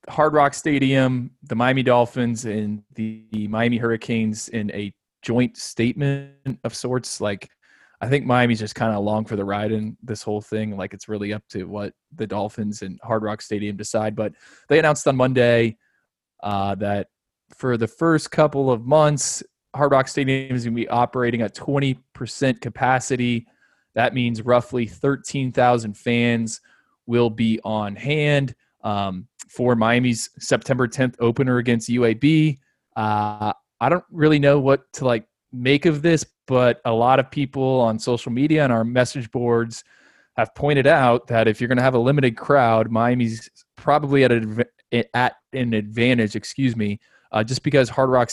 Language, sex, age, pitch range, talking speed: English, male, 20-39, 110-130 Hz, 165 wpm